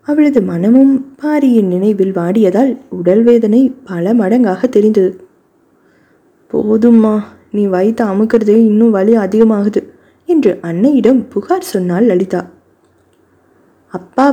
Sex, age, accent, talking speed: female, 20-39, native, 95 wpm